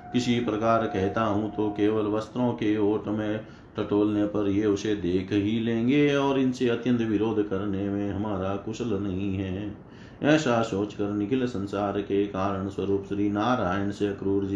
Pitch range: 100-120 Hz